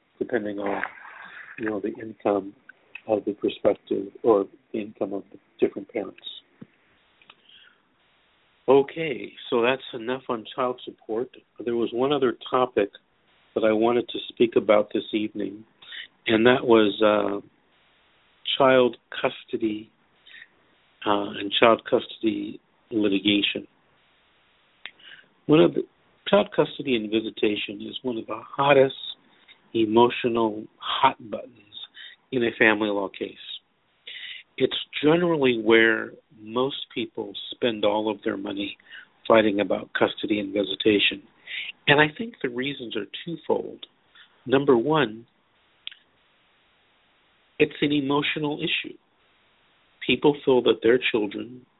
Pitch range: 105-135 Hz